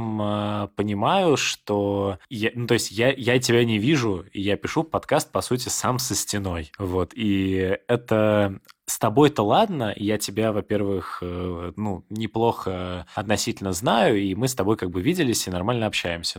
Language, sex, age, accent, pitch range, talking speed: Russian, male, 20-39, native, 95-115 Hz, 155 wpm